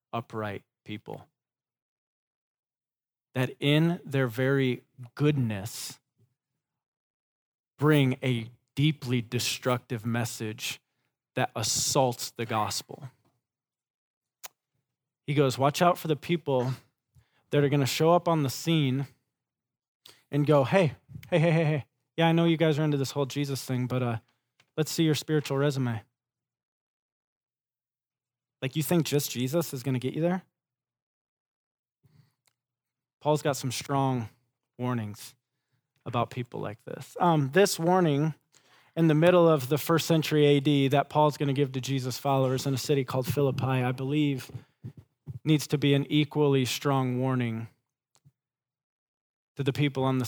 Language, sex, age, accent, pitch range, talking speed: English, male, 20-39, American, 125-145 Hz, 135 wpm